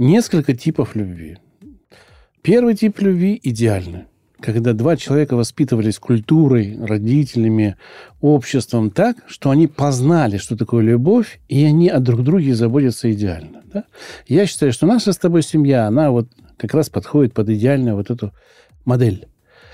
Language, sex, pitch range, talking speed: Russian, male, 120-170 Hz, 135 wpm